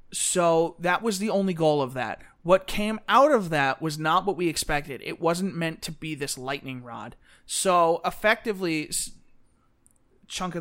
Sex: male